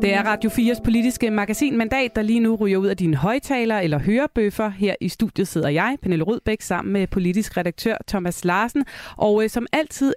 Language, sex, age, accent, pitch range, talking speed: Danish, female, 30-49, native, 170-235 Hz, 195 wpm